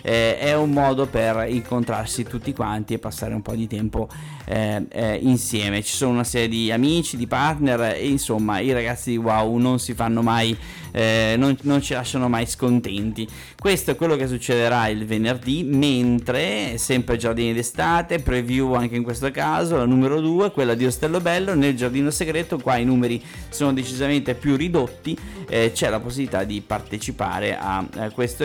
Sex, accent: male, native